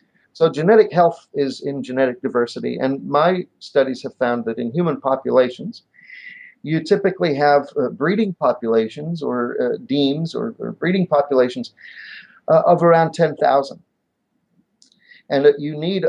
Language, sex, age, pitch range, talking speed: English, male, 40-59, 130-180 Hz, 140 wpm